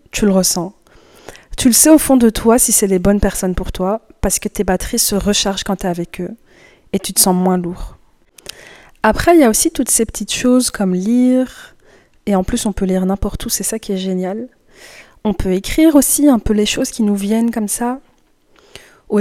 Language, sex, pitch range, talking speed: French, female, 195-245 Hz, 225 wpm